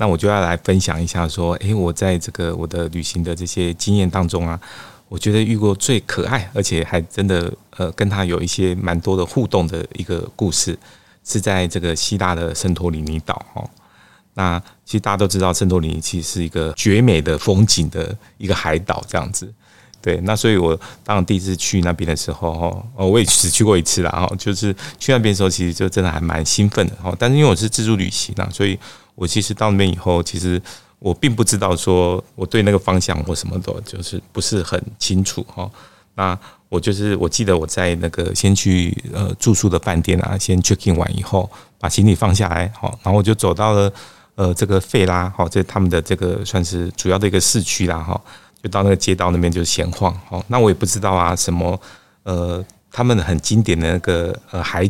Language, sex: Chinese, male